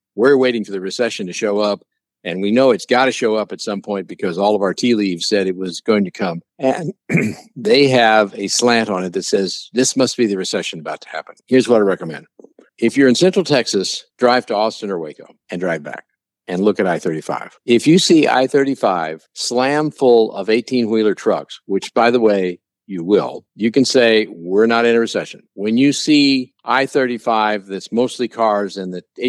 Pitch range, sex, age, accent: 95-125 Hz, male, 60-79, American